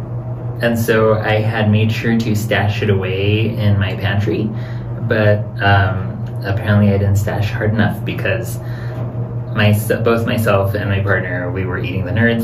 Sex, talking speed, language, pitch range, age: male, 155 wpm, English, 100-115 Hz, 20-39